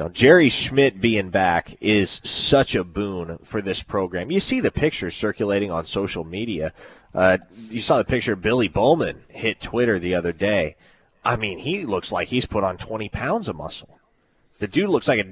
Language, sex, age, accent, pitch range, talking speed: English, male, 30-49, American, 100-125 Hz, 190 wpm